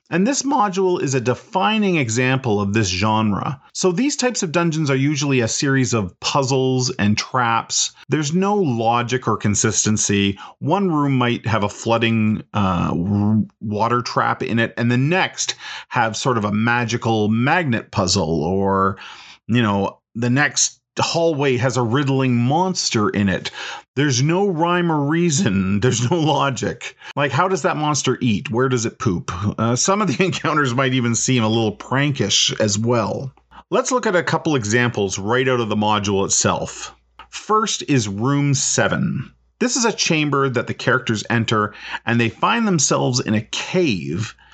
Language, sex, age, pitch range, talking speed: English, male, 40-59, 110-150 Hz, 165 wpm